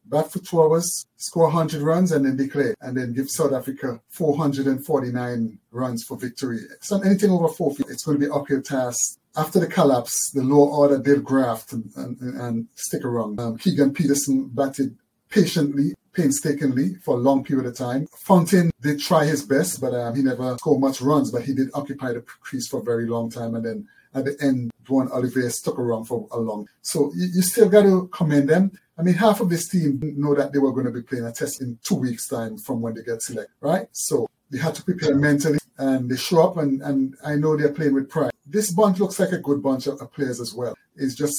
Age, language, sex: 30-49, English, male